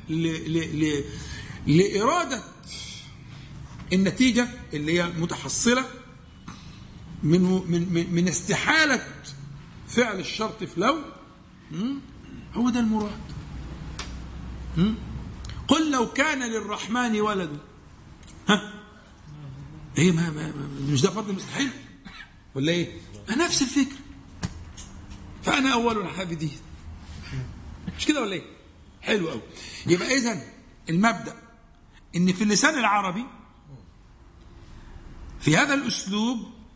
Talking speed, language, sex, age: 90 wpm, Arabic, male, 50-69